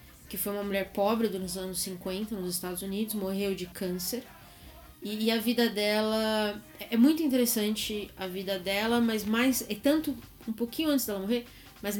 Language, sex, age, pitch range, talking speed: Portuguese, female, 20-39, 185-225 Hz, 175 wpm